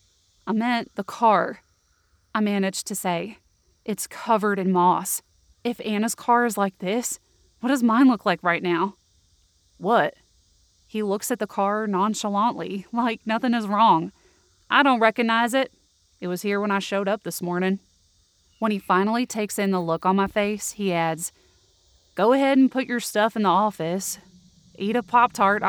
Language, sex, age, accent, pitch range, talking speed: English, female, 30-49, American, 175-210 Hz, 170 wpm